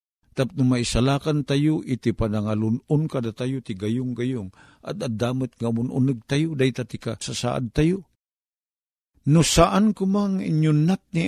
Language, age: Filipino, 50-69